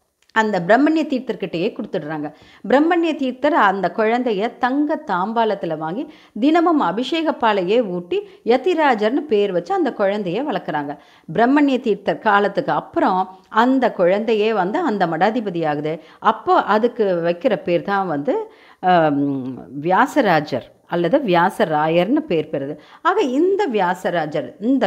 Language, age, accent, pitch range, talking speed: Tamil, 50-69, native, 180-280 Hz, 105 wpm